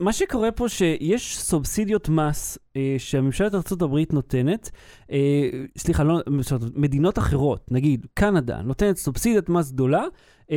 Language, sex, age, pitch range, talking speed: Hebrew, male, 30-49, 140-190 Hz, 125 wpm